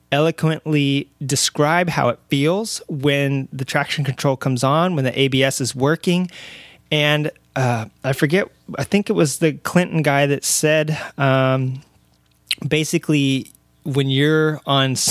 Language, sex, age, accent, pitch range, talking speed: English, male, 20-39, American, 130-155 Hz, 135 wpm